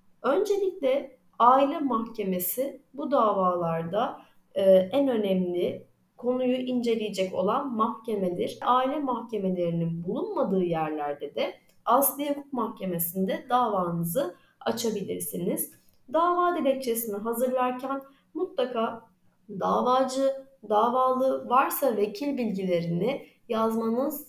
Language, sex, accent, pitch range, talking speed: Turkish, female, native, 200-275 Hz, 75 wpm